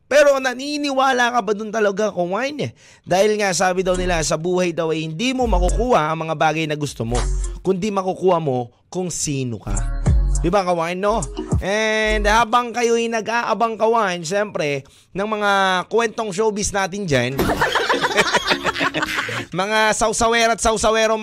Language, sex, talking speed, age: Filipino, male, 145 wpm, 20-39